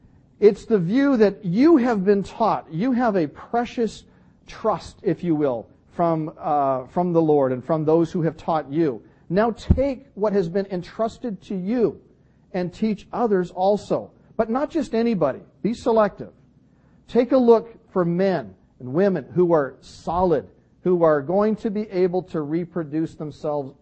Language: English